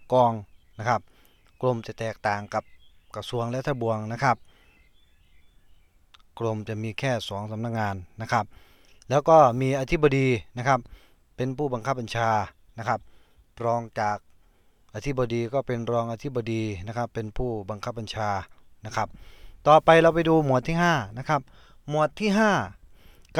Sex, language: male, Thai